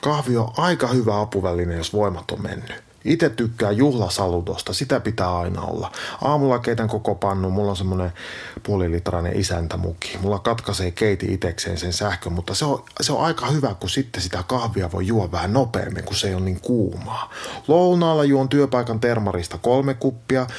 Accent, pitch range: native, 95-125 Hz